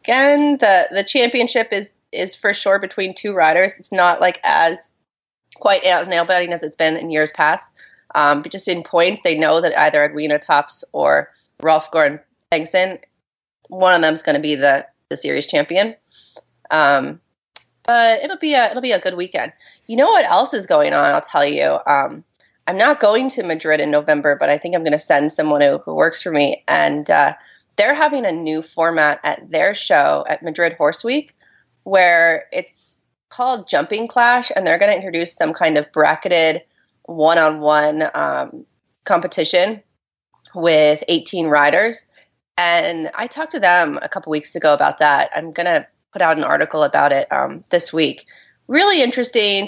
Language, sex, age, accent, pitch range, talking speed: English, female, 30-49, American, 155-215 Hz, 180 wpm